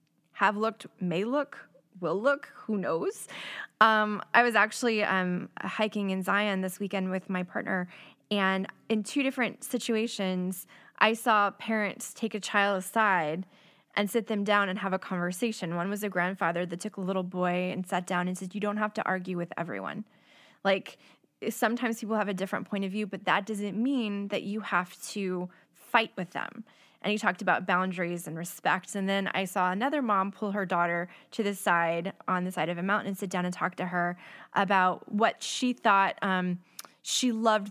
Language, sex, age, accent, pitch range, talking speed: English, female, 10-29, American, 185-220 Hz, 195 wpm